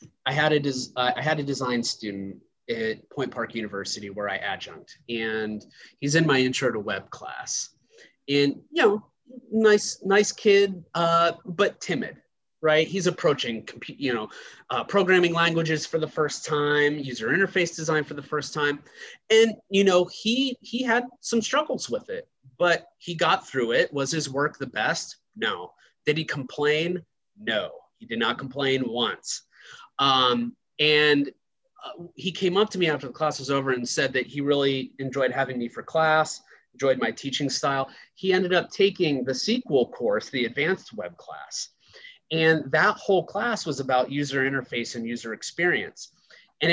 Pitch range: 130-180 Hz